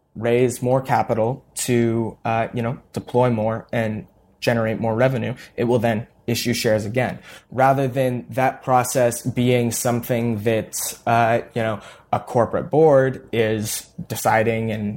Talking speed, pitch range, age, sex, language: 140 wpm, 110-130 Hz, 20-39, male, English